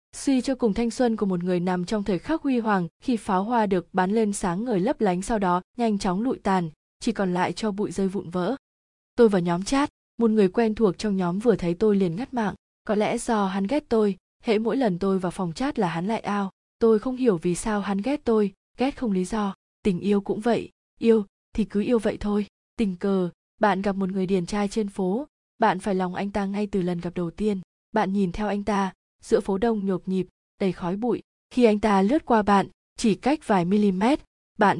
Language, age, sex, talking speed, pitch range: Vietnamese, 20-39, female, 240 wpm, 190-230 Hz